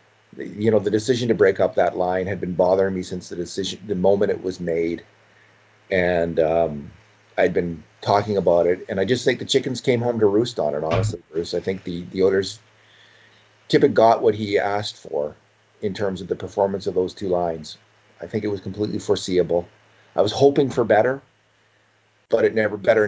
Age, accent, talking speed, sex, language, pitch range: 40-59, American, 200 wpm, male, English, 95-110 Hz